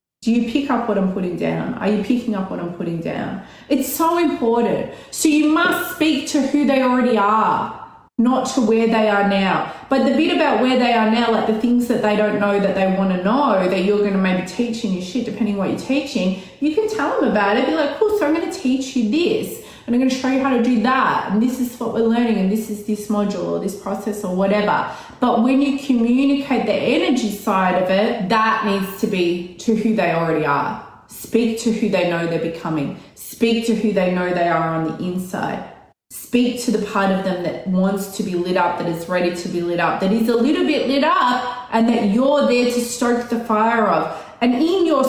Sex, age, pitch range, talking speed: female, 20-39, 195-260 Hz, 240 wpm